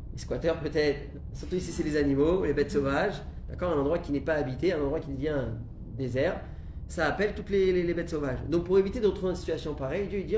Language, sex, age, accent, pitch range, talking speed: French, male, 30-49, French, 105-160 Hz, 225 wpm